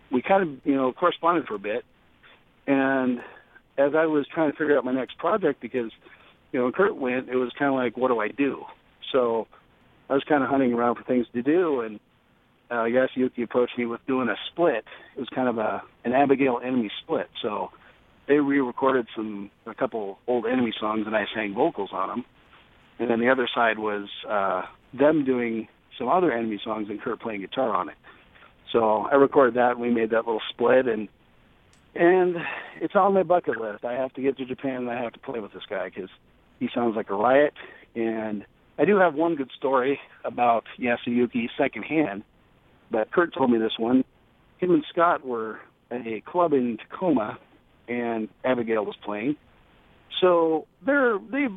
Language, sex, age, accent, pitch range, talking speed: English, male, 40-59, American, 115-145 Hz, 200 wpm